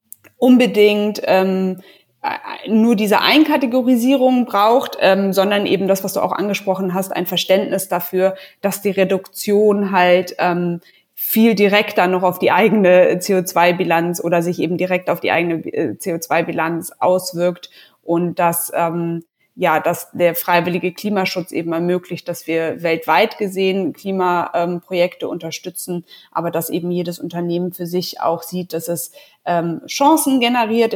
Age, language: 20-39, German